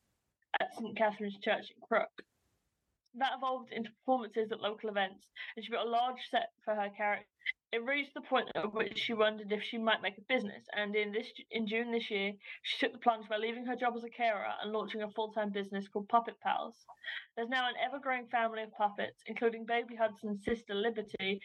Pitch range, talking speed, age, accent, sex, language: 210-240 Hz, 205 wpm, 20-39, British, female, English